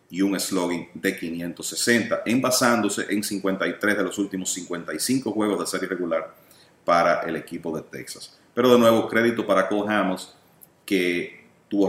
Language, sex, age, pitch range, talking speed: English, male, 40-59, 90-105 Hz, 150 wpm